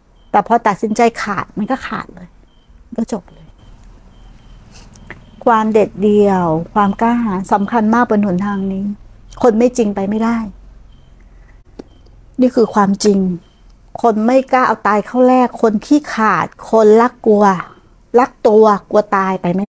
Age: 60-79